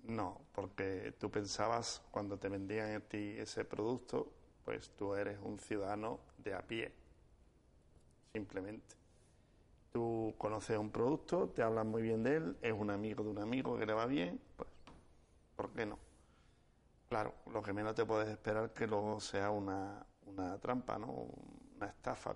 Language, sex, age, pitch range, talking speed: Spanish, male, 70-89, 100-115 Hz, 160 wpm